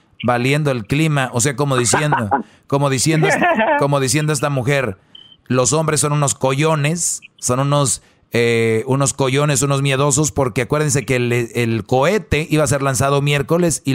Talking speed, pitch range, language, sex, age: 160 wpm, 125-155 Hz, Spanish, male, 40-59